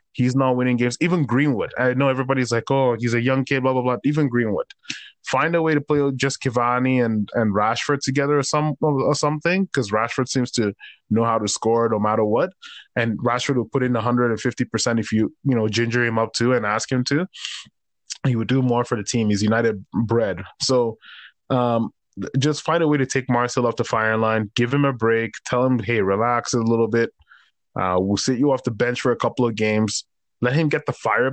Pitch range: 115-135 Hz